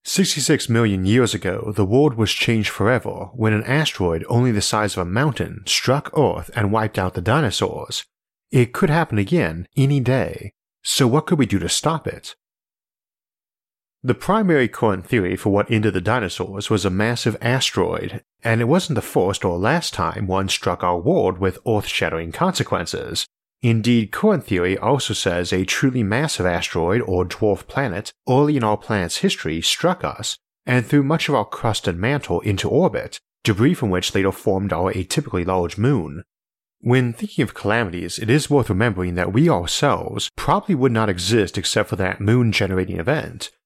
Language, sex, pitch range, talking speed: English, male, 95-130 Hz, 170 wpm